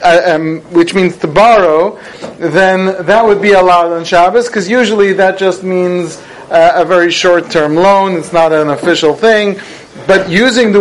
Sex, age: male, 40-59